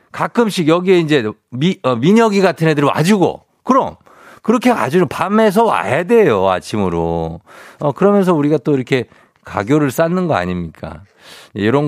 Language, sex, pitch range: Korean, male, 115-180 Hz